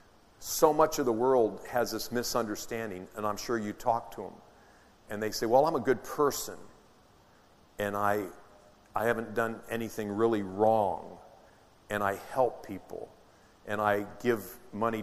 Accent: American